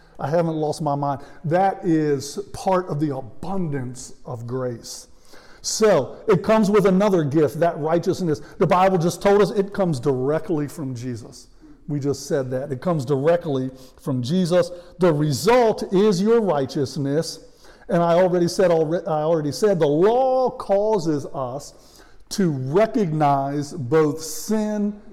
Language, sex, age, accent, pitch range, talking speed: English, male, 50-69, American, 150-210 Hz, 145 wpm